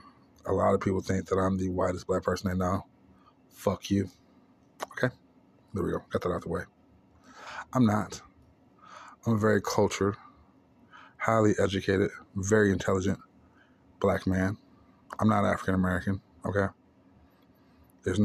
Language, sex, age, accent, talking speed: English, male, 20-39, American, 140 wpm